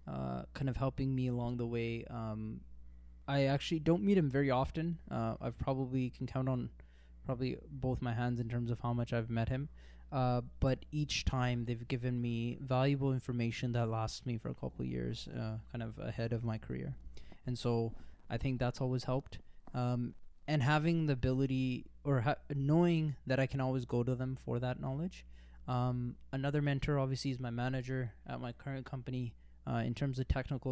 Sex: male